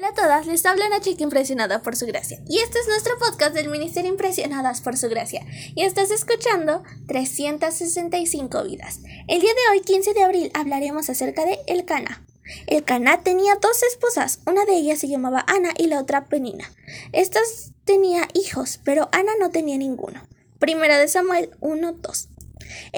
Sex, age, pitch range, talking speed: female, 20-39, 270-375 Hz, 165 wpm